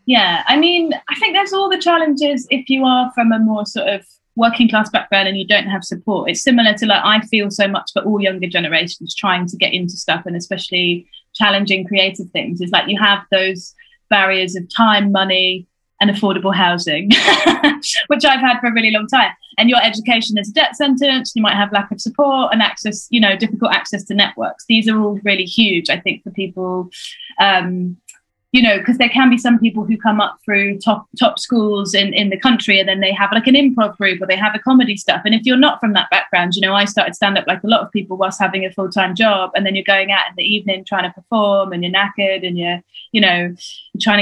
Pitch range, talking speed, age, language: 190-230 Hz, 235 wpm, 20-39, English